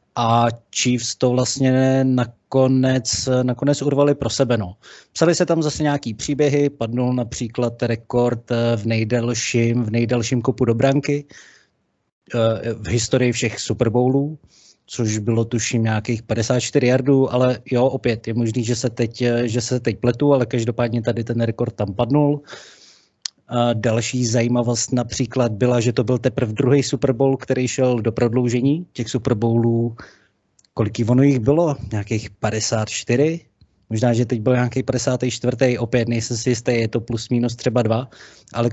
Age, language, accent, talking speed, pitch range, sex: 30-49, Czech, native, 150 wpm, 115-130 Hz, male